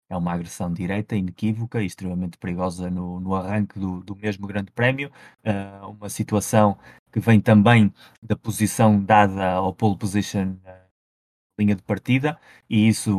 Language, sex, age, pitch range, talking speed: Portuguese, male, 20-39, 95-110 Hz, 160 wpm